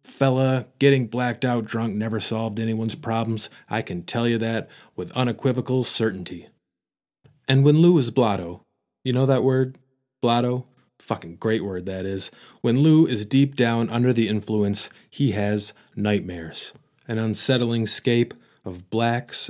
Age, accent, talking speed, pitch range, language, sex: 30-49, American, 150 wpm, 105-125 Hz, English, male